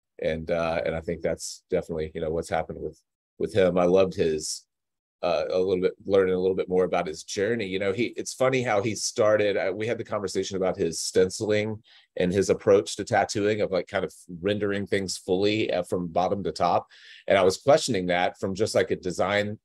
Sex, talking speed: male, 215 wpm